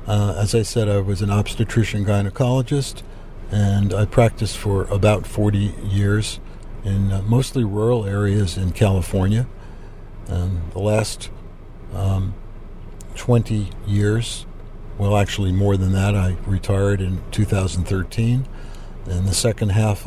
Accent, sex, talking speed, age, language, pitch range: American, male, 125 wpm, 60-79, English, 95-110 Hz